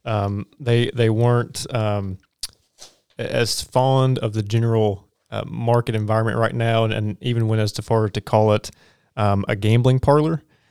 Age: 20-39